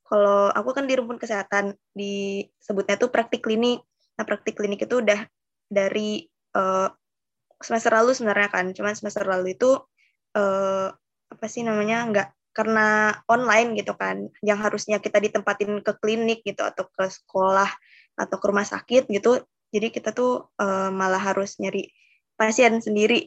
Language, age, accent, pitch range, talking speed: Indonesian, 20-39, native, 195-225 Hz, 150 wpm